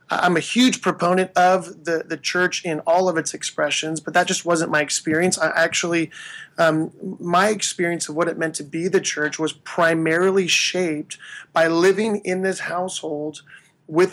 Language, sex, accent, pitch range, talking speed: English, male, American, 155-180 Hz, 170 wpm